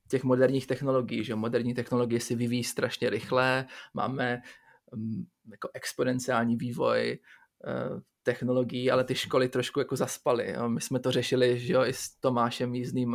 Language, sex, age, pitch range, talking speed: Czech, male, 20-39, 120-130 Hz, 150 wpm